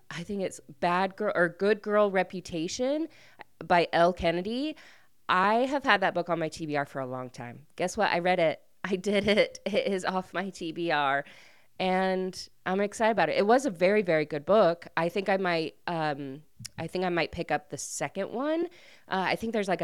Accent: American